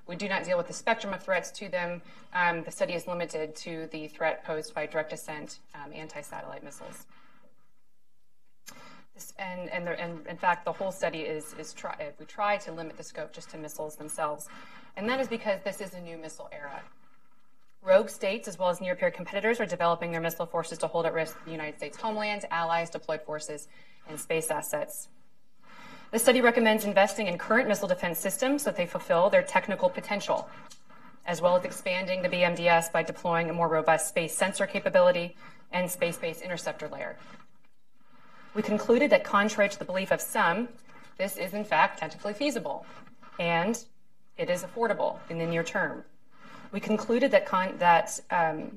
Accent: American